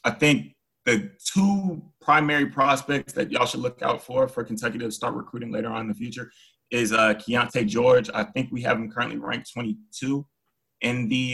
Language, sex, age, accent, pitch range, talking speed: English, male, 20-39, American, 110-135 Hz, 190 wpm